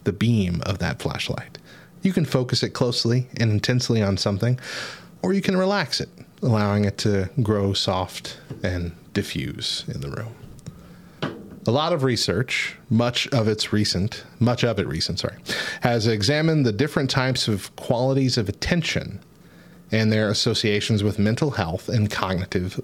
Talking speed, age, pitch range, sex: 155 wpm, 30-49, 105-130 Hz, male